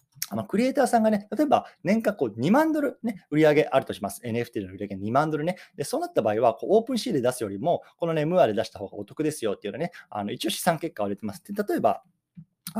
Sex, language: male, Japanese